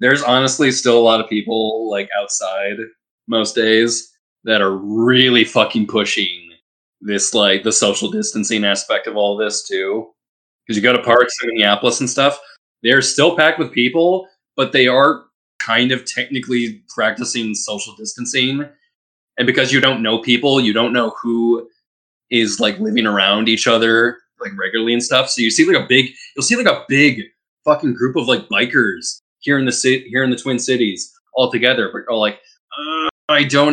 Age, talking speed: 20-39, 185 wpm